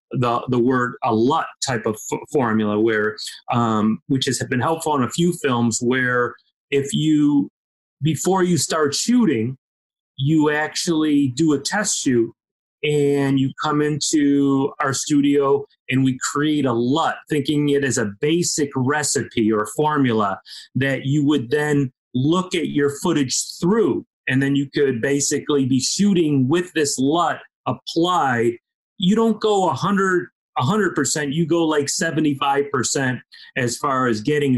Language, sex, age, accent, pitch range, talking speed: English, male, 30-49, American, 130-150 Hz, 150 wpm